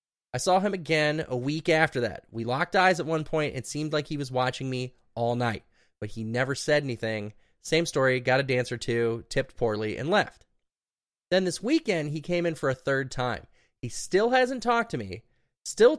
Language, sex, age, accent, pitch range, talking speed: English, male, 20-39, American, 125-180 Hz, 210 wpm